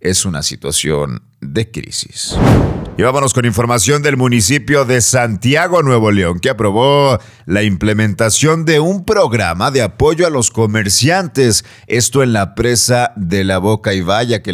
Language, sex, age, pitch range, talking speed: Spanish, male, 40-59, 95-120 Hz, 150 wpm